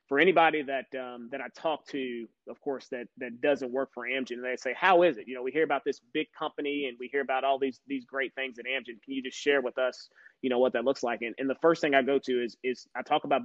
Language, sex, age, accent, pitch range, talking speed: English, male, 30-49, American, 125-145 Hz, 290 wpm